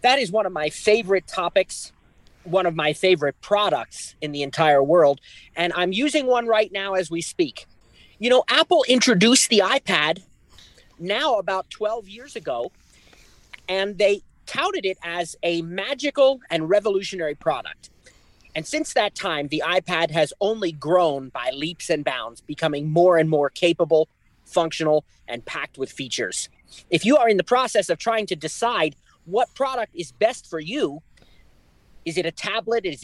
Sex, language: male, English